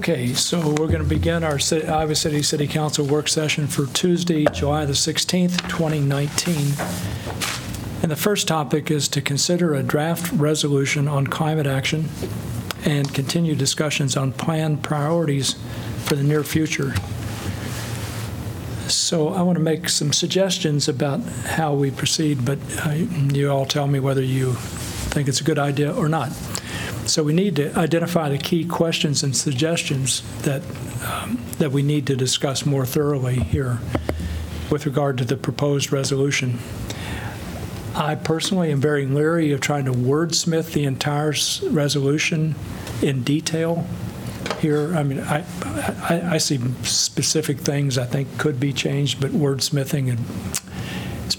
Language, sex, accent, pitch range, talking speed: English, male, American, 130-155 Hz, 145 wpm